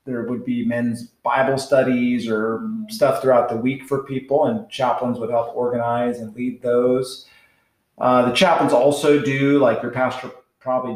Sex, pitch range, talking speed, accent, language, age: male, 120-150 Hz, 165 wpm, American, English, 30-49